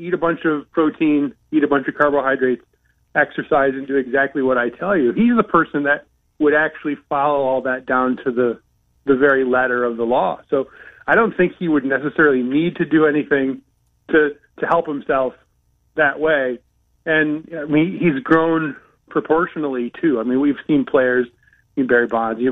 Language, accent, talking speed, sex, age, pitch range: English, American, 185 wpm, male, 30-49, 130-155 Hz